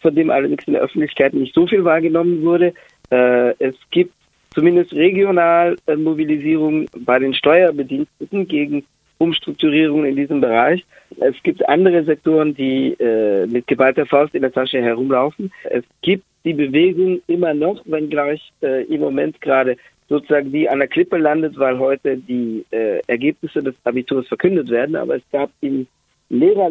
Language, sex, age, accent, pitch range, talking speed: German, male, 50-69, German, 135-190 Hz, 145 wpm